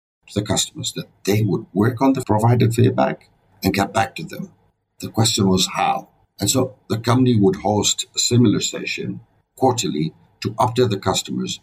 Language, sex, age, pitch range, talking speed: English, male, 60-79, 95-135 Hz, 170 wpm